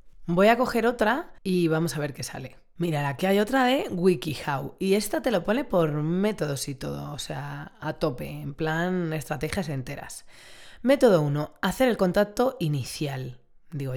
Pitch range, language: 145-195 Hz, Spanish